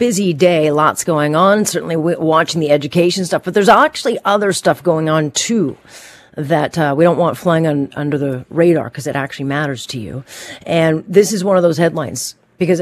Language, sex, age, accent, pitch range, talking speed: English, female, 40-59, American, 140-165 Hz, 195 wpm